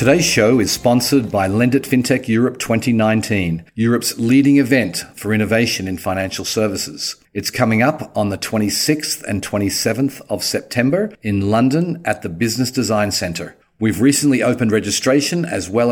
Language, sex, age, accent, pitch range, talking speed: English, male, 40-59, Australian, 100-120 Hz, 150 wpm